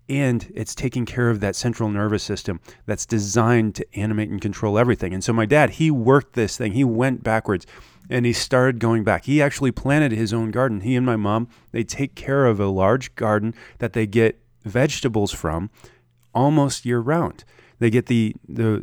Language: English